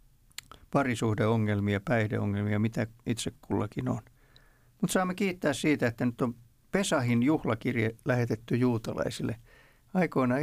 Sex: male